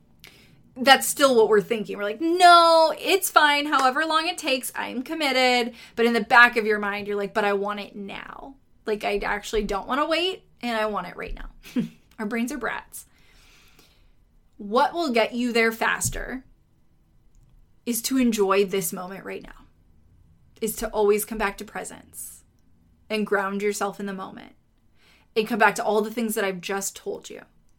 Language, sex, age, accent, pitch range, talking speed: English, female, 20-39, American, 200-235 Hz, 185 wpm